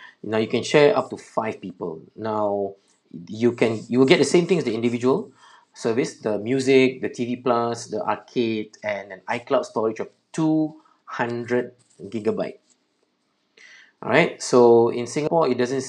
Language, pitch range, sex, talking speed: English, 105-125 Hz, male, 160 wpm